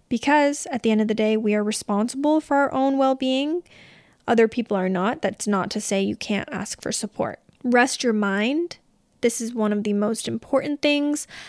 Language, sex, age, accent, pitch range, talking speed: English, female, 20-39, American, 210-245 Hz, 200 wpm